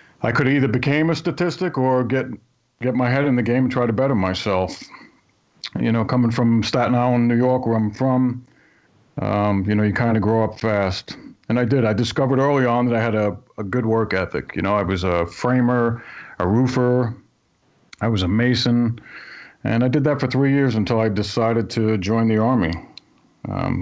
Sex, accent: male, American